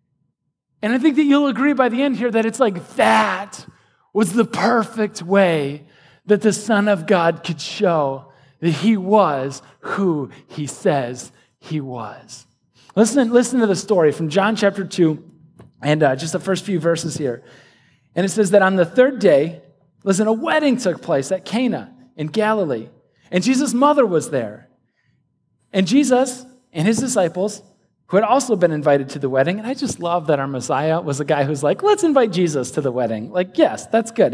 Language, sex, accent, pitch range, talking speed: English, male, American, 155-230 Hz, 185 wpm